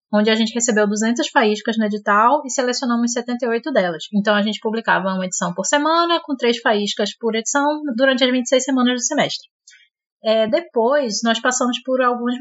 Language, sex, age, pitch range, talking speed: Portuguese, female, 20-39, 215-280 Hz, 180 wpm